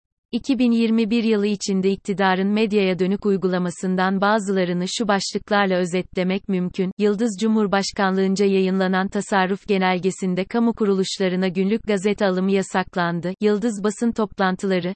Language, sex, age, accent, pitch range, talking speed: Turkish, female, 30-49, native, 190-215 Hz, 105 wpm